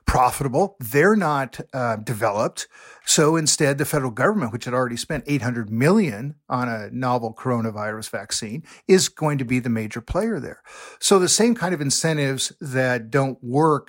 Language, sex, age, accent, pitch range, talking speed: English, male, 50-69, American, 125-170 Hz, 165 wpm